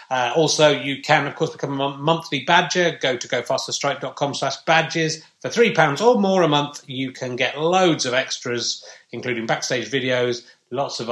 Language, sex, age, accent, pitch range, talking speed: English, male, 30-49, British, 125-170 Hz, 180 wpm